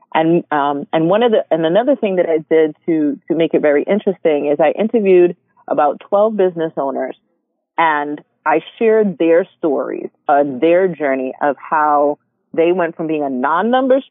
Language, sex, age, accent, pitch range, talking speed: English, female, 30-49, American, 145-180 Hz, 175 wpm